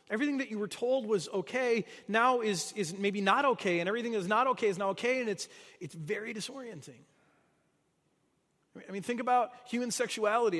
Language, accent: English, American